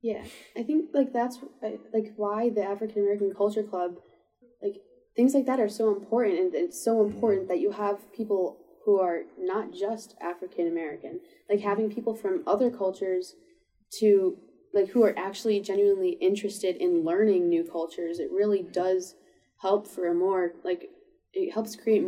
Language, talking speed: English, 165 wpm